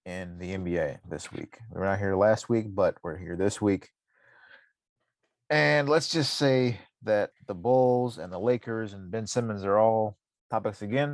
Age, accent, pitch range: 30-49, American, 105-125 Hz